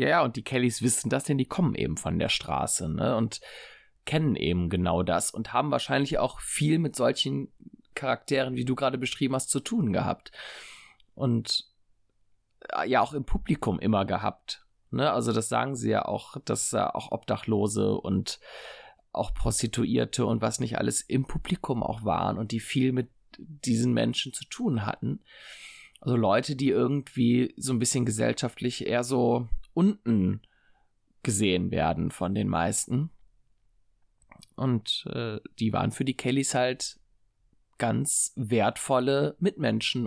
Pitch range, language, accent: 110-130 Hz, German, German